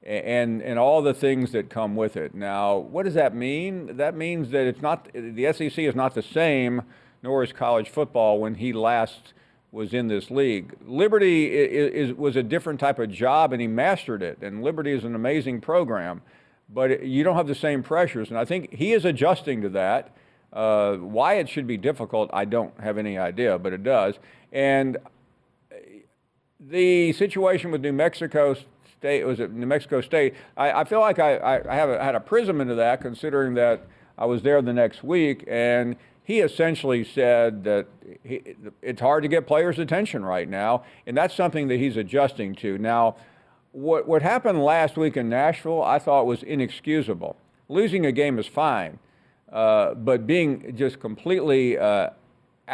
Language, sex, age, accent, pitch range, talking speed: English, male, 50-69, American, 120-160 Hz, 180 wpm